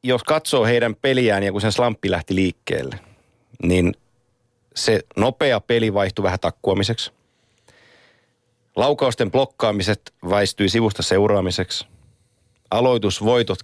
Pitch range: 100-120 Hz